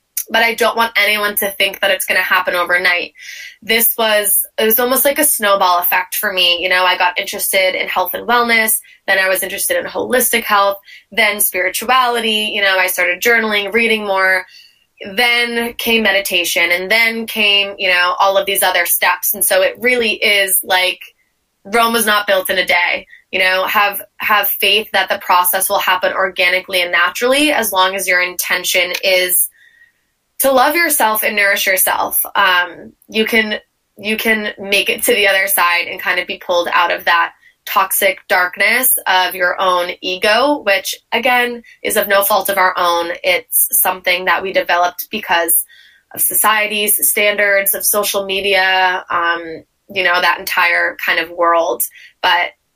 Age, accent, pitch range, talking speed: 20-39, American, 185-220 Hz, 175 wpm